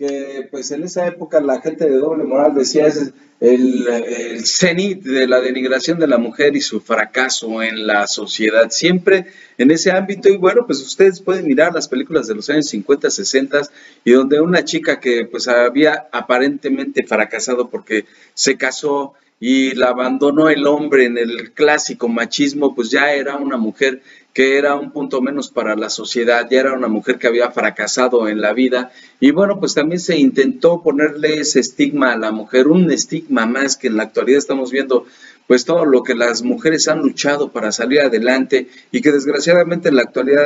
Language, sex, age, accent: Spanish, male, 40-59, Mexican